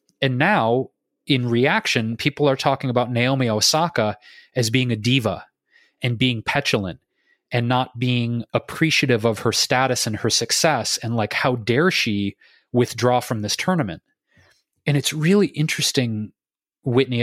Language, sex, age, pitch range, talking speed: English, male, 30-49, 115-145 Hz, 145 wpm